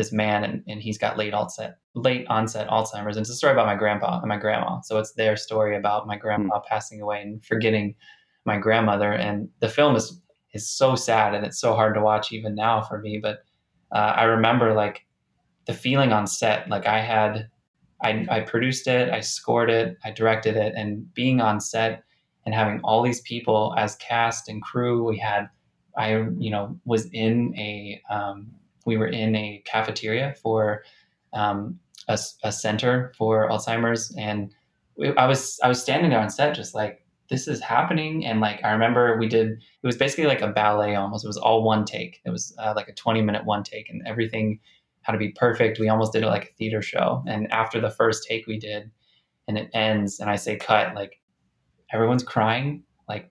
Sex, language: male, English